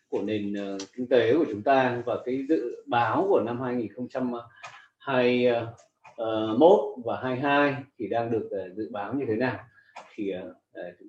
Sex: male